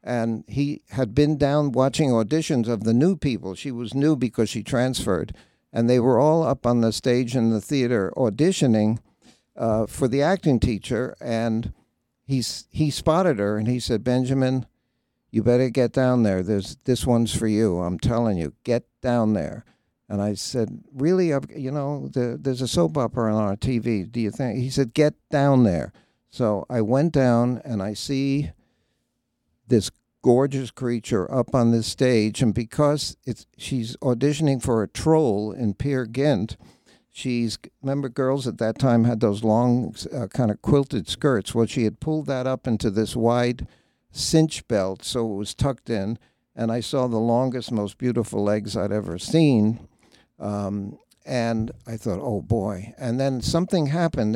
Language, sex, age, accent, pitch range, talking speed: English, male, 60-79, American, 110-135 Hz, 175 wpm